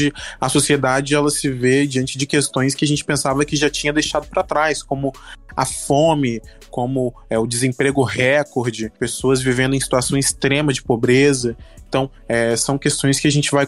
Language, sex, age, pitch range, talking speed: Portuguese, male, 20-39, 130-155 Hz, 180 wpm